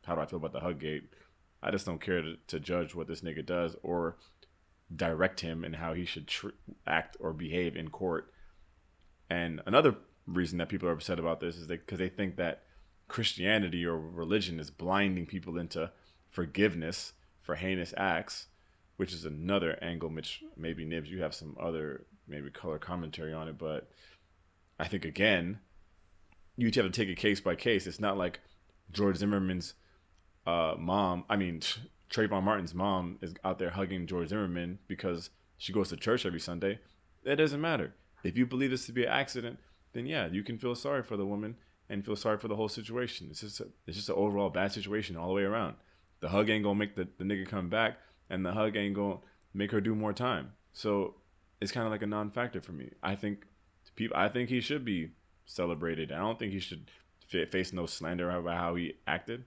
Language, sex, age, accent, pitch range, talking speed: English, male, 30-49, American, 85-100 Hz, 205 wpm